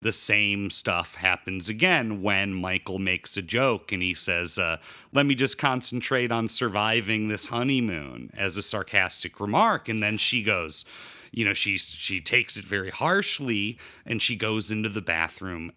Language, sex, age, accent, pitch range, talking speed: English, male, 40-59, American, 100-135 Hz, 170 wpm